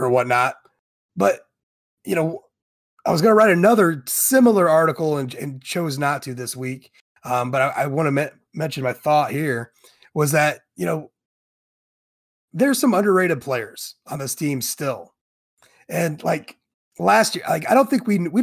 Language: English